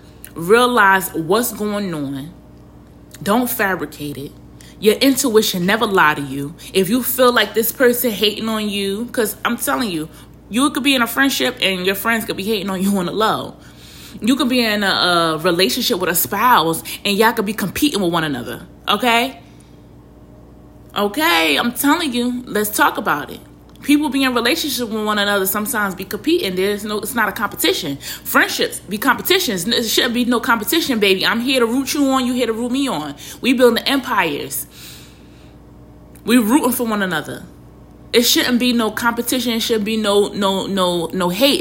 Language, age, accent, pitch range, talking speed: English, 20-39, American, 175-245 Hz, 185 wpm